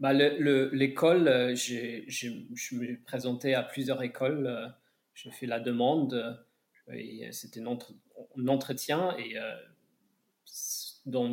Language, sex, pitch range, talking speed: French, male, 125-140 Hz, 140 wpm